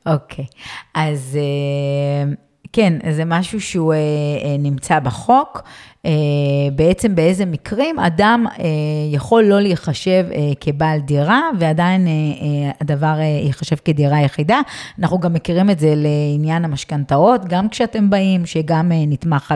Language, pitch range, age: Hebrew, 145-210 Hz, 30-49